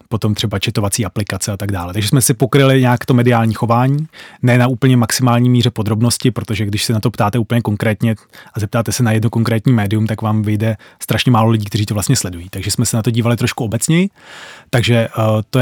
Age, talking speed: 30-49, 220 wpm